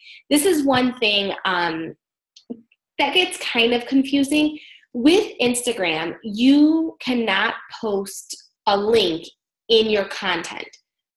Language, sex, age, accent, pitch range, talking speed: English, female, 20-39, American, 190-275 Hz, 110 wpm